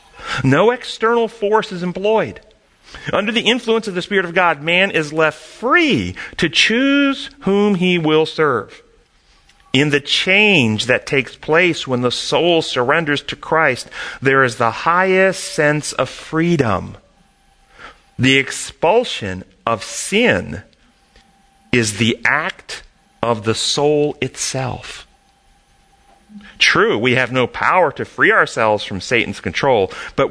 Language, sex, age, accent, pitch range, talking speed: English, male, 40-59, American, 125-200 Hz, 130 wpm